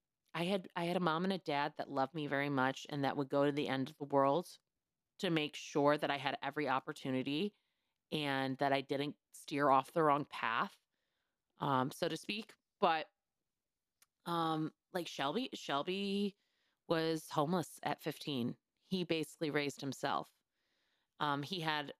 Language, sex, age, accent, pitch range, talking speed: English, female, 30-49, American, 140-170 Hz, 165 wpm